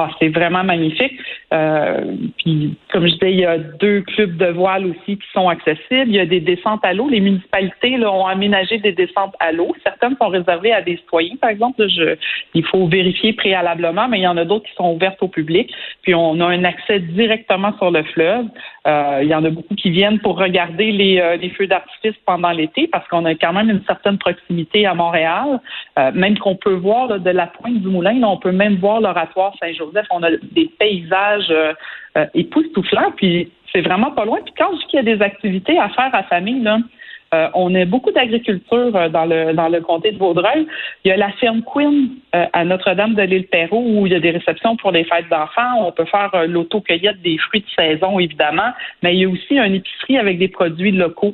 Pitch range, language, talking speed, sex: 175-215 Hz, French, 215 wpm, female